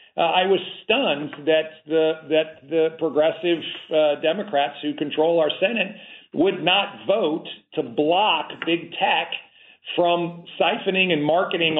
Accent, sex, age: American, male, 40-59